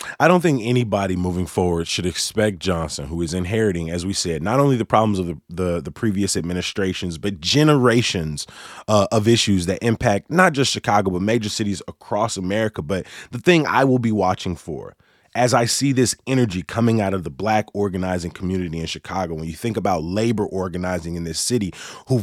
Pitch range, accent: 95-125 Hz, American